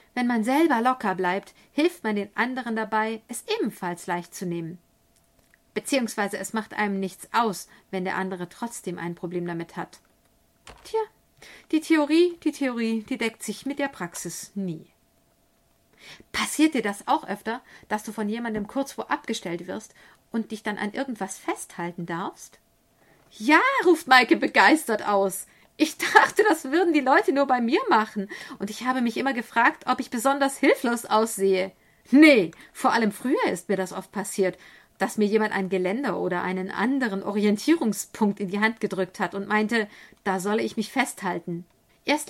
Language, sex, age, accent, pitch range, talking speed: German, female, 50-69, German, 195-255 Hz, 165 wpm